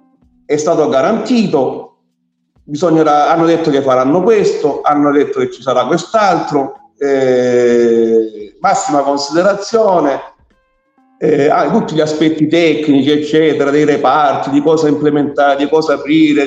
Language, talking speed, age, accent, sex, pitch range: Italian, 115 wpm, 50-69, native, male, 130-170 Hz